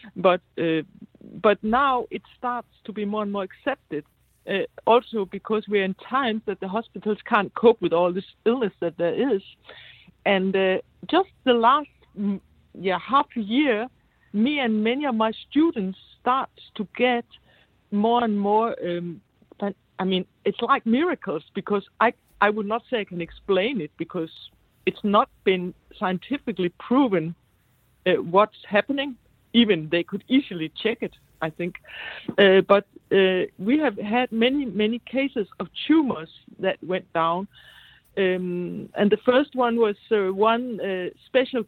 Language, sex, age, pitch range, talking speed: English, female, 60-79, 185-230 Hz, 155 wpm